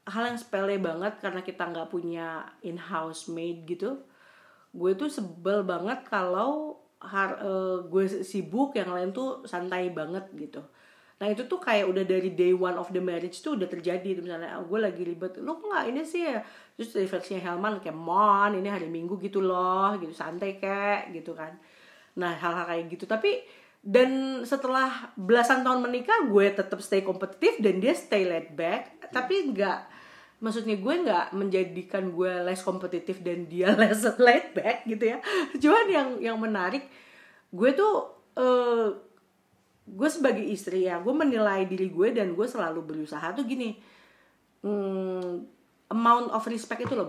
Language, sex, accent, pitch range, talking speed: Indonesian, female, native, 185-240 Hz, 165 wpm